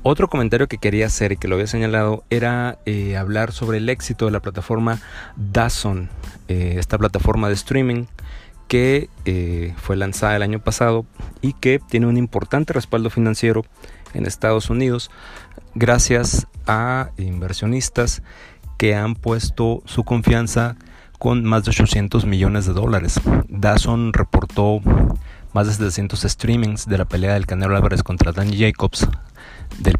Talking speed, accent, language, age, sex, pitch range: 145 wpm, Mexican, Spanish, 40-59, male, 95-115 Hz